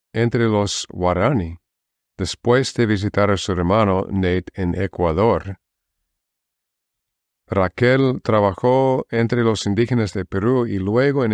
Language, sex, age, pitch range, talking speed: Spanish, male, 40-59, 90-115 Hz, 115 wpm